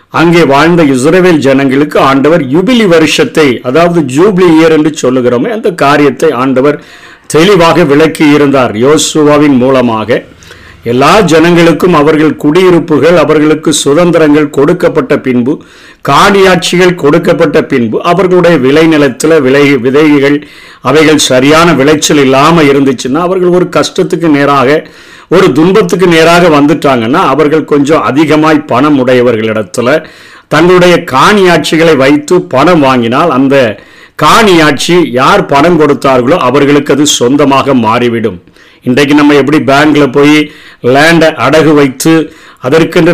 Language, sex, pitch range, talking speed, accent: Tamil, male, 140-170 Hz, 90 wpm, native